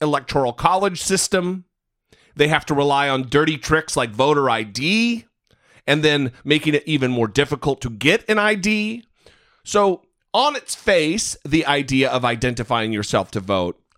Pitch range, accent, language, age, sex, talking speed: 130-185 Hz, American, English, 40-59, male, 150 wpm